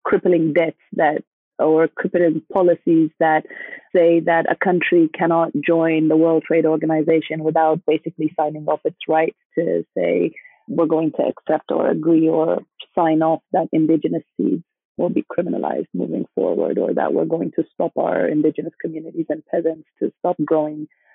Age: 30-49